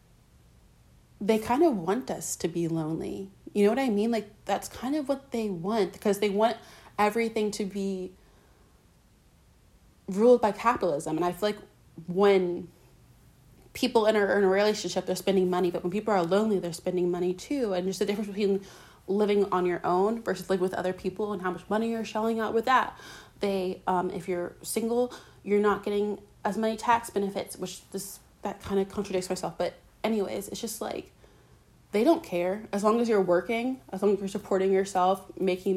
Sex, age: female, 30-49